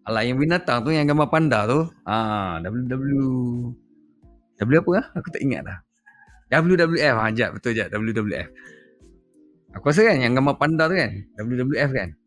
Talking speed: 165 wpm